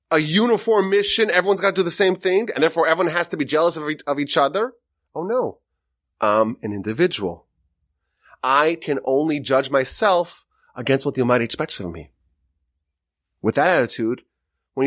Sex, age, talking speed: male, 30-49, 165 wpm